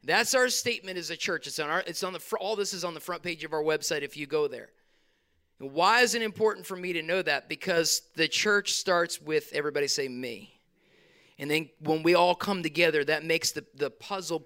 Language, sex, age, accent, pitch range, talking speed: English, male, 30-49, American, 165-230 Hz, 230 wpm